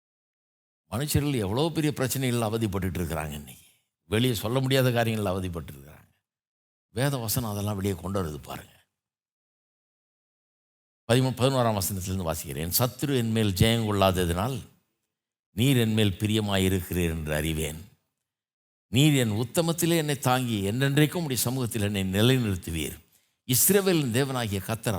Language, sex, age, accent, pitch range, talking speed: Tamil, male, 60-79, native, 95-140 Hz, 110 wpm